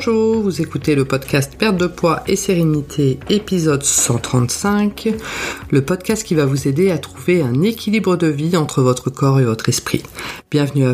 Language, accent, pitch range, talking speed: French, French, 135-180 Hz, 185 wpm